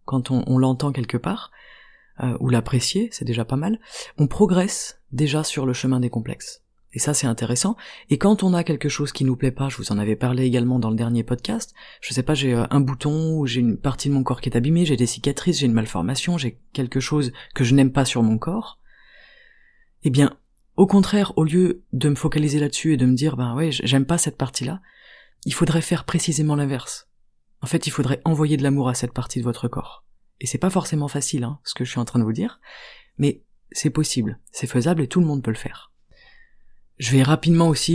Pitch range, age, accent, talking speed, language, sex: 125-165 Hz, 30-49, French, 230 wpm, French, female